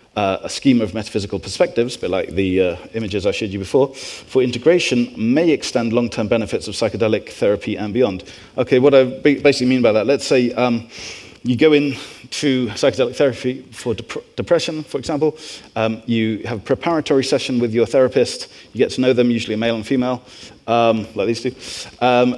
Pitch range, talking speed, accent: 110-140 Hz, 190 wpm, British